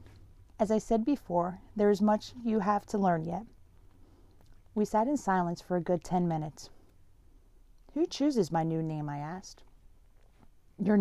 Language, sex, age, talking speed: English, female, 30-49, 160 wpm